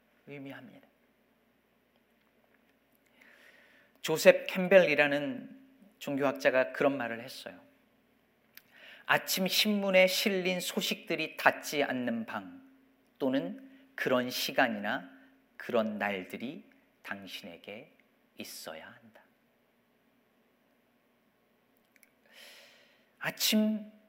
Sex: male